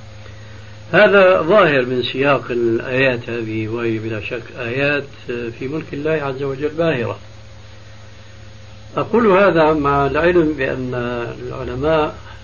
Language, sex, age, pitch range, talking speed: Arabic, male, 60-79, 105-140 Hz, 100 wpm